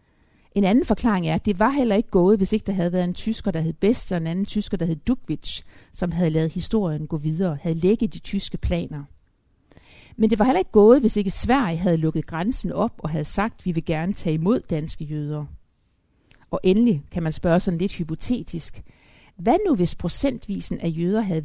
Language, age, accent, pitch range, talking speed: Danish, 60-79, native, 155-205 Hz, 215 wpm